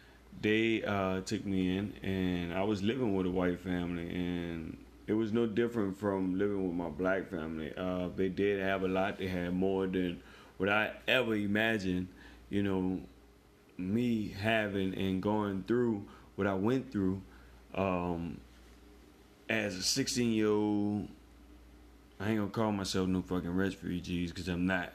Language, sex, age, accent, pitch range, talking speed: English, male, 20-39, American, 90-105 Hz, 155 wpm